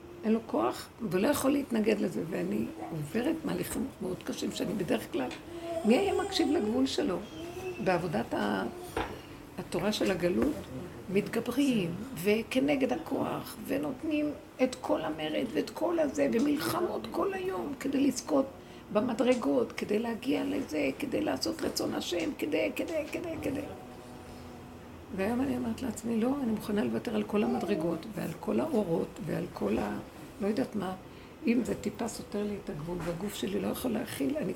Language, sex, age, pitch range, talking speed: Hebrew, female, 60-79, 215-280 Hz, 150 wpm